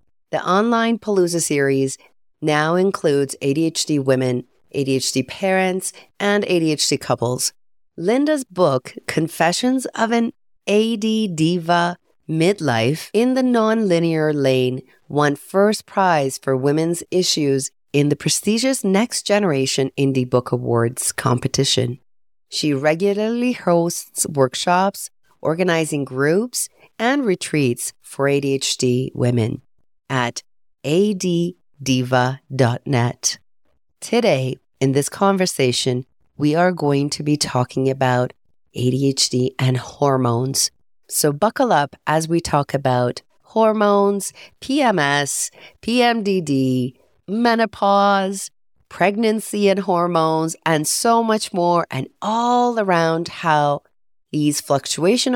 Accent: American